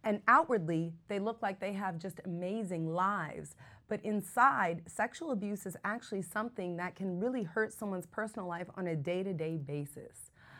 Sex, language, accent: female, English, American